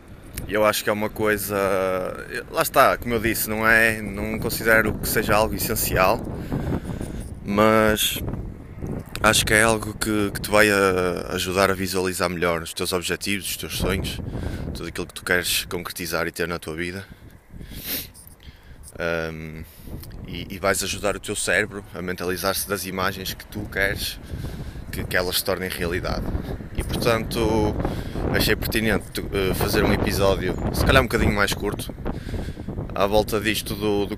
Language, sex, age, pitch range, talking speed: Portuguese, male, 20-39, 90-110 Hz, 155 wpm